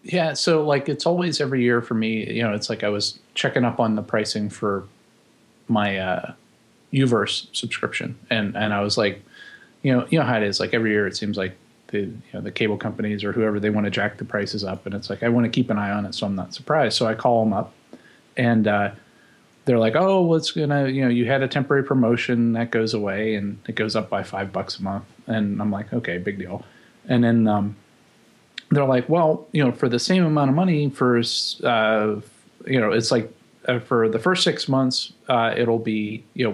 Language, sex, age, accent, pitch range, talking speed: English, male, 30-49, American, 105-130 Hz, 235 wpm